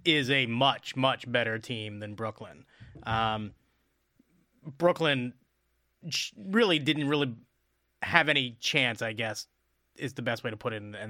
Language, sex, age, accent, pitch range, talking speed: English, male, 30-49, American, 115-150 Hz, 145 wpm